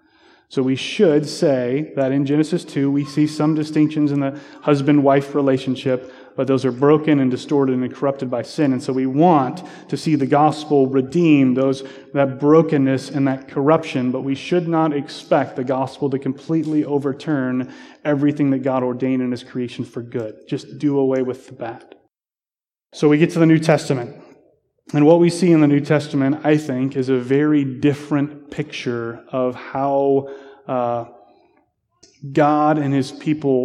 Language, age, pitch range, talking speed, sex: English, 30-49, 130-150 Hz, 170 wpm, male